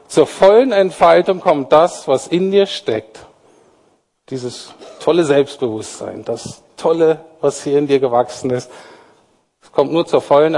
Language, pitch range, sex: German, 125-170 Hz, male